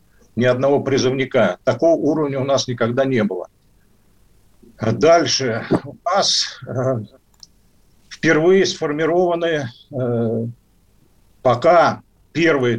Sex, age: male, 60-79